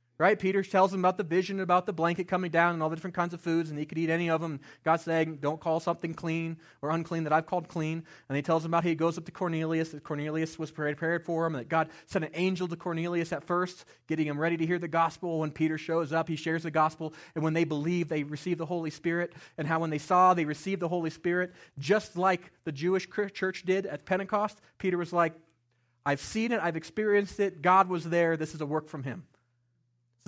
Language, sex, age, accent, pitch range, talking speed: English, male, 30-49, American, 155-190 Hz, 250 wpm